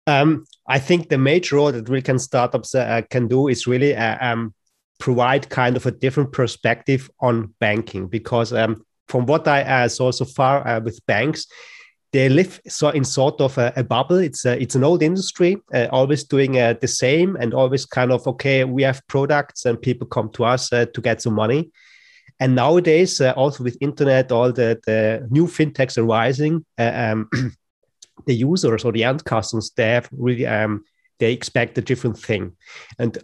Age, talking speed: 30-49, 185 wpm